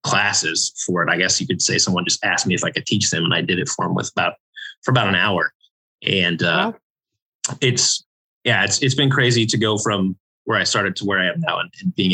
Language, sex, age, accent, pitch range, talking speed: English, male, 20-39, American, 100-125 Hz, 245 wpm